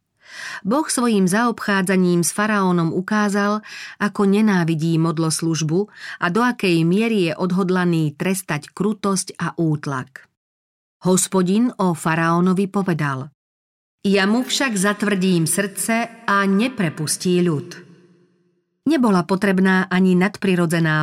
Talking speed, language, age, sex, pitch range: 105 wpm, Slovak, 40-59, female, 160-200 Hz